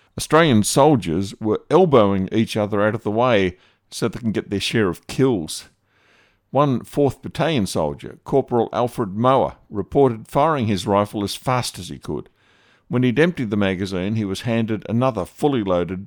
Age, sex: 50-69, male